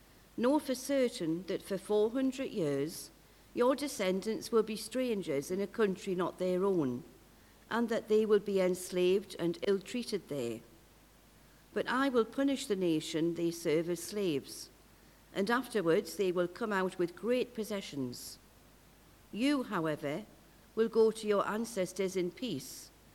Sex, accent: female, British